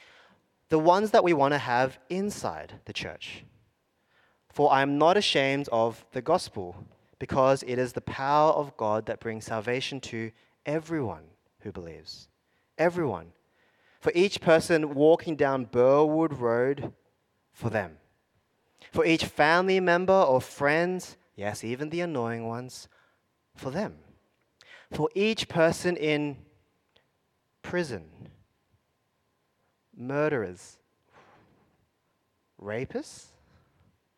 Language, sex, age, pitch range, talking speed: English, male, 30-49, 115-165 Hz, 110 wpm